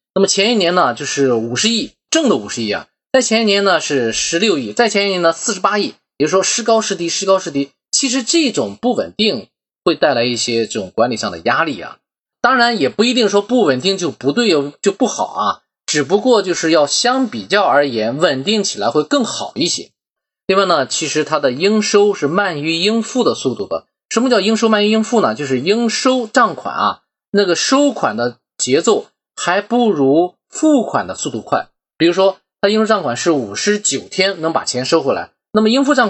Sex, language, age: male, Chinese, 20-39